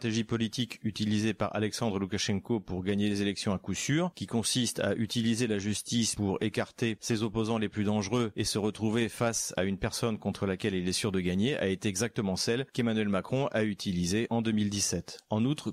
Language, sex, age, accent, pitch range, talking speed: French, male, 40-59, French, 100-120 Hz, 200 wpm